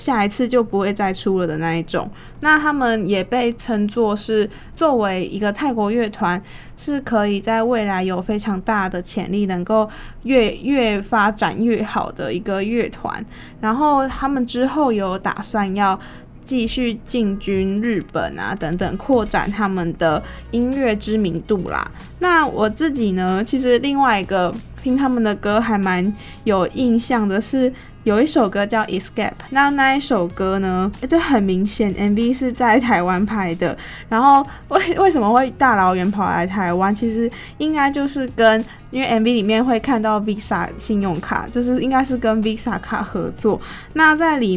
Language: Chinese